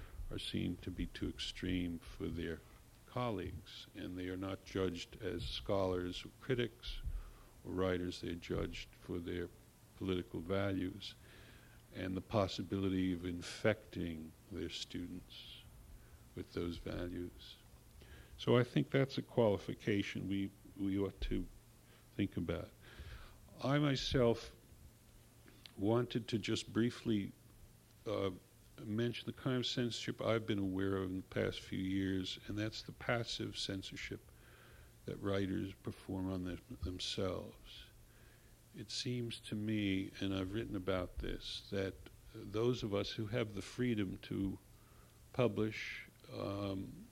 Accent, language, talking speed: American, English, 125 wpm